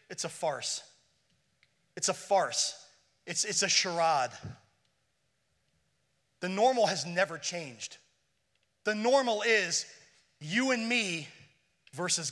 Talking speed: 105 wpm